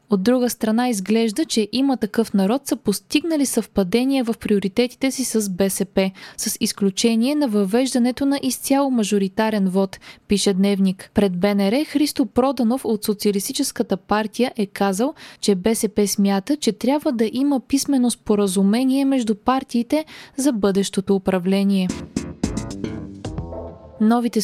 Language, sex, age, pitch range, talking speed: Bulgarian, female, 20-39, 200-255 Hz, 125 wpm